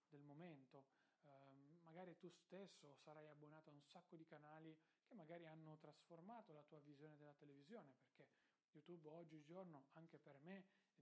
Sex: male